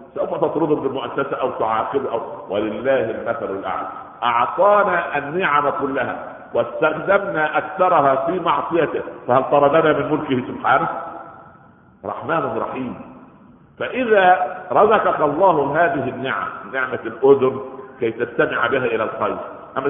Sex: male